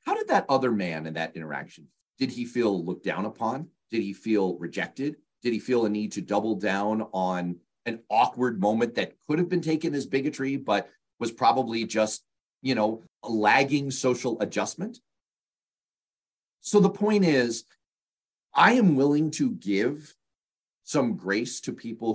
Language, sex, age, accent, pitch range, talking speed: English, male, 40-59, American, 100-135 Hz, 155 wpm